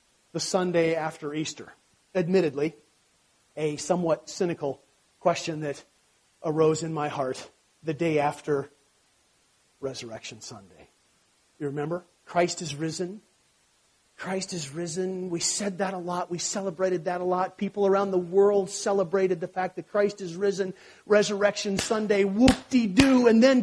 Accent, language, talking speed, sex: American, English, 135 wpm, male